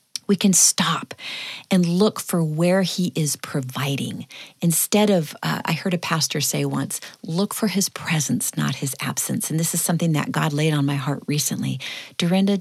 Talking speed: 180 wpm